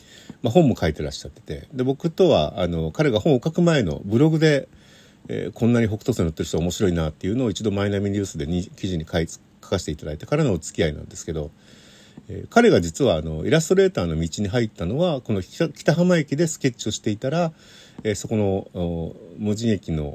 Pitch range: 85-125 Hz